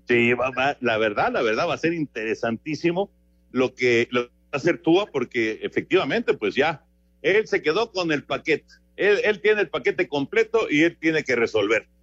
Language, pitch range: Spanish, 125-195 Hz